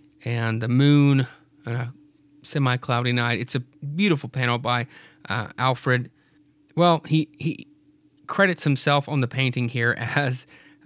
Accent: American